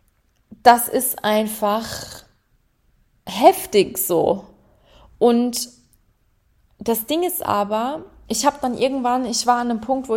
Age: 20-39